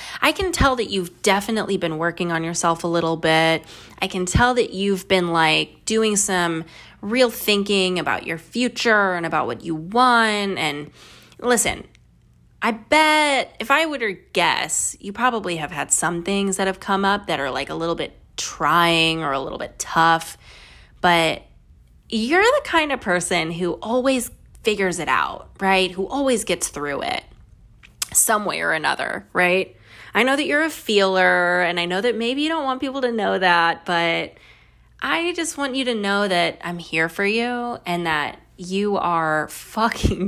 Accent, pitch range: American, 165-235 Hz